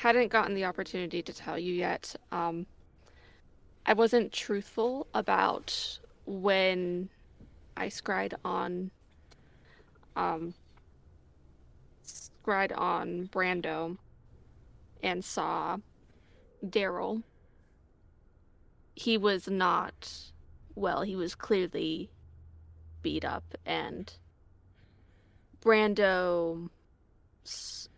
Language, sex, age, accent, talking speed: English, female, 20-39, American, 75 wpm